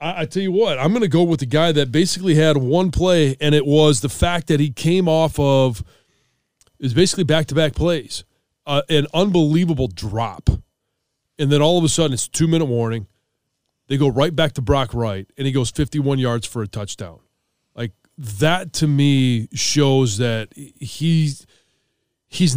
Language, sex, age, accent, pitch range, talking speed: English, male, 30-49, American, 130-160 Hz, 185 wpm